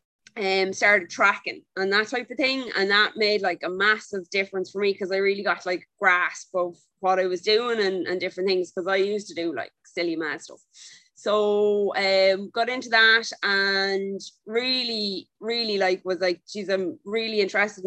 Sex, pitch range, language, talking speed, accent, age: female, 190-220 Hz, English, 190 wpm, Irish, 20-39